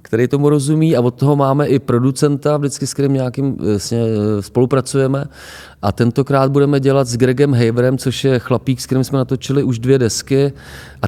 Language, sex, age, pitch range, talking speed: Czech, male, 30-49, 110-145 Hz, 180 wpm